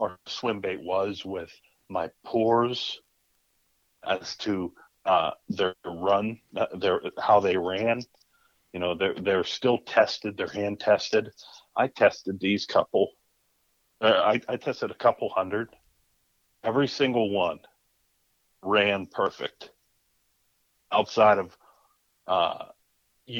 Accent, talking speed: American, 110 wpm